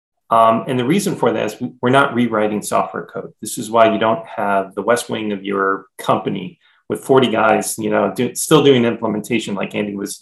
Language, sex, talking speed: English, male, 210 wpm